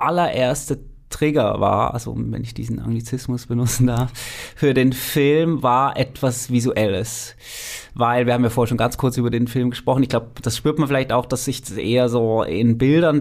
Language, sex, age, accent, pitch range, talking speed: German, male, 20-39, German, 115-130 Hz, 190 wpm